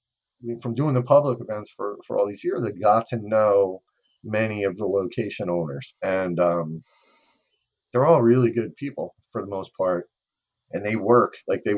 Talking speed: 180 wpm